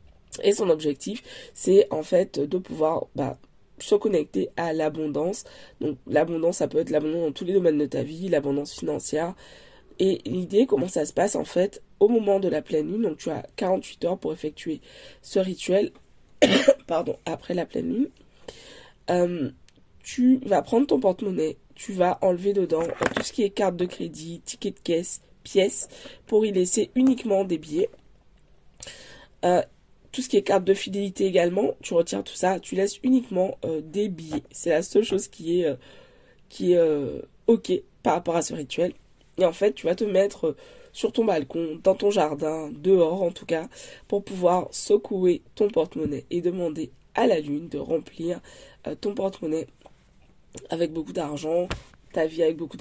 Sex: female